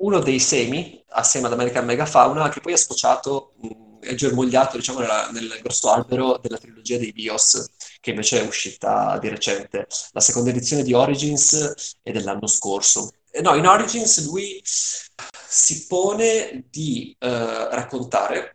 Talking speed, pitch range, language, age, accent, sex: 145 wpm, 115-150 Hz, Italian, 20-39, native, male